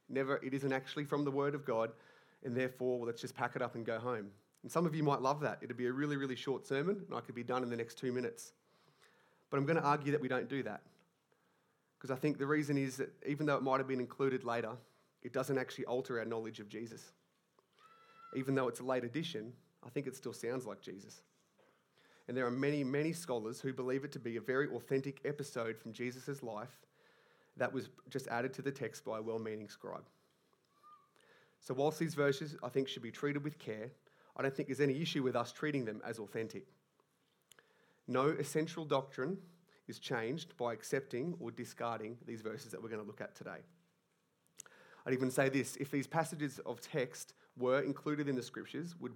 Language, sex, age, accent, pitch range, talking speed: English, male, 30-49, Australian, 120-145 Hz, 215 wpm